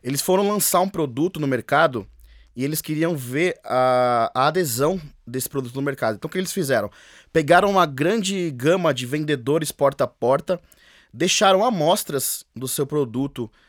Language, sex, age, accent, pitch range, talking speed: English, male, 20-39, Brazilian, 140-200 Hz, 160 wpm